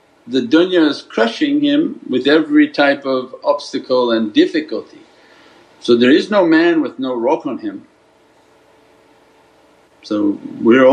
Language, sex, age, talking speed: English, male, 50-69, 130 wpm